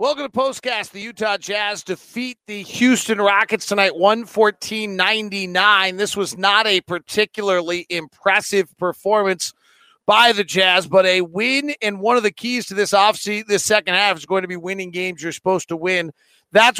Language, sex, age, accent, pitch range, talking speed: English, male, 40-59, American, 185-225 Hz, 170 wpm